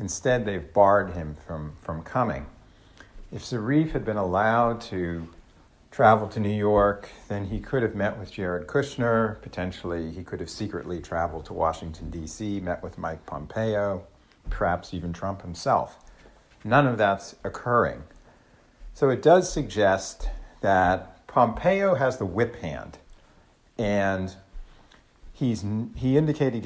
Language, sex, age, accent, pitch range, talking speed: English, male, 50-69, American, 90-130 Hz, 135 wpm